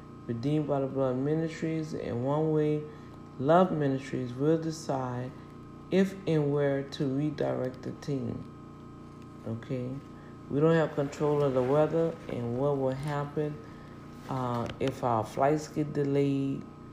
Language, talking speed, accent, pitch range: English, 130 wpm, American, 125-150 Hz